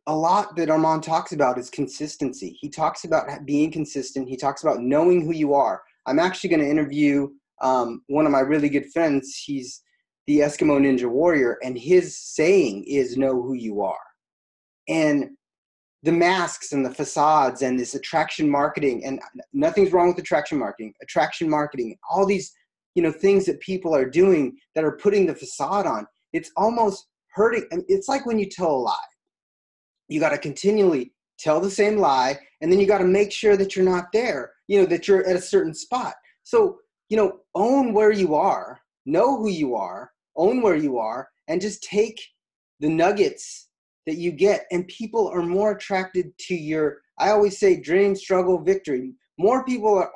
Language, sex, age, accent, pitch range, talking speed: English, male, 30-49, American, 150-210 Hz, 185 wpm